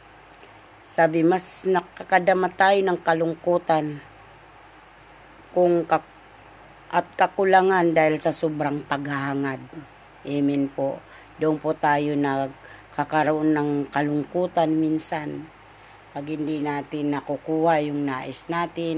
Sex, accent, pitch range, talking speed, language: female, native, 140-165 Hz, 90 wpm, Filipino